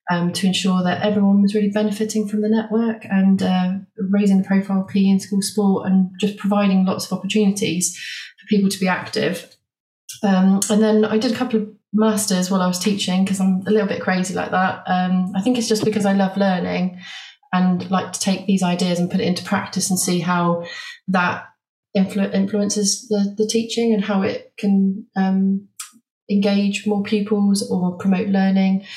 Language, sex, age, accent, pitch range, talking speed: English, female, 30-49, British, 180-210 Hz, 195 wpm